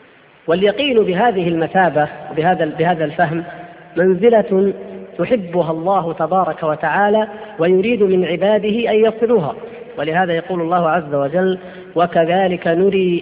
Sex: female